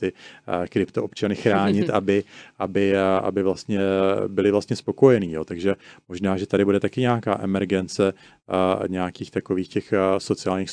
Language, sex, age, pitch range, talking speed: Czech, male, 30-49, 95-100 Hz, 115 wpm